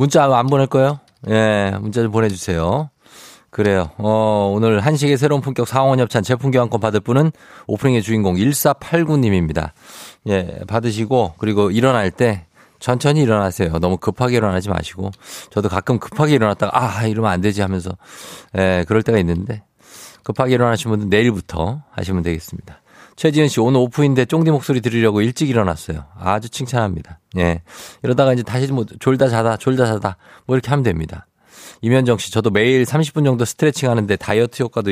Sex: male